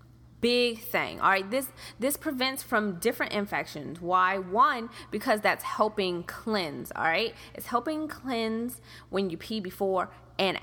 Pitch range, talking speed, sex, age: 205-265 Hz, 145 wpm, female, 20-39